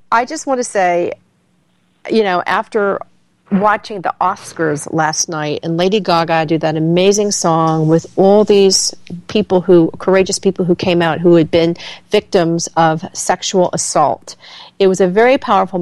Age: 50-69